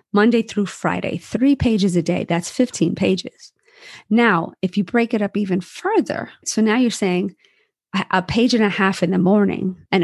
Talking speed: 185 wpm